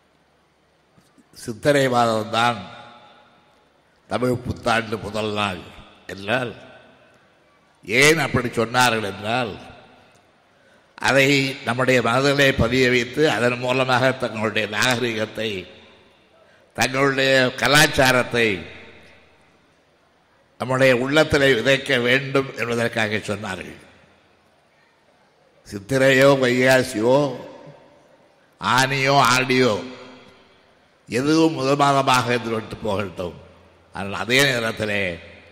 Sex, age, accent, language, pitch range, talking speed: male, 60-79, native, Tamil, 105-130 Hz, 65 wpm